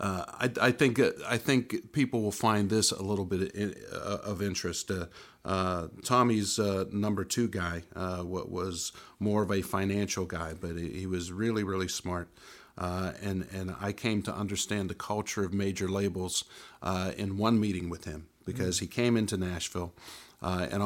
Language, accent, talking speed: English, American, 180 wpm